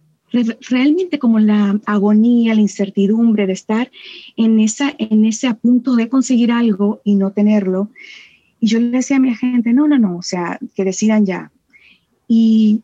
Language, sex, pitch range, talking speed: Spanish, female, 205-250 Hz, 170 wpm